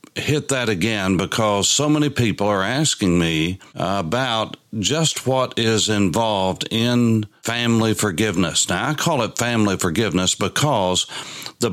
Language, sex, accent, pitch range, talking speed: English, male, American, 100-125 Hz, 135 wpm